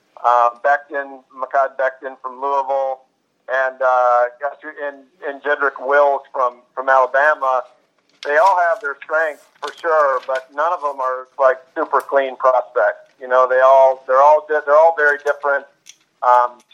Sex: male